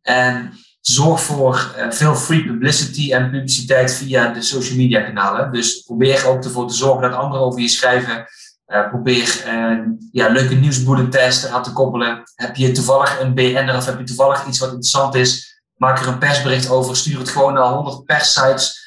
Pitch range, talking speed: 125-140 Hz, 180 wpm